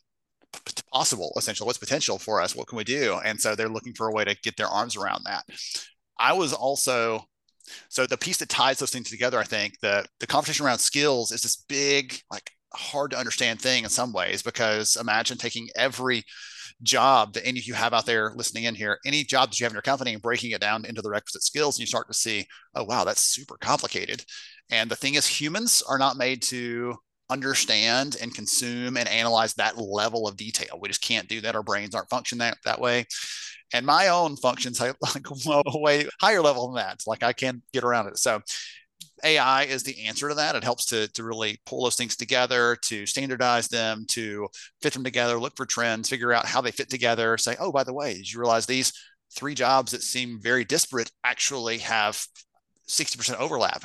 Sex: male